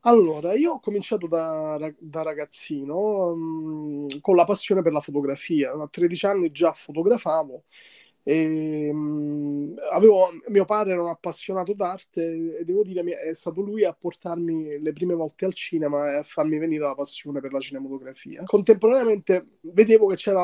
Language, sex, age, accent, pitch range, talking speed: Italian, male, 20-39, native, 150-195 Hz, 155 wpm